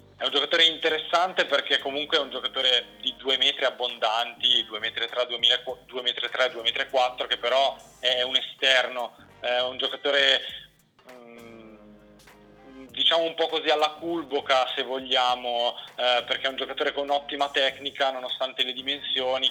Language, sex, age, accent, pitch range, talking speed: Italian, male, 20-39, native, 125-145 Hz, 140 wpm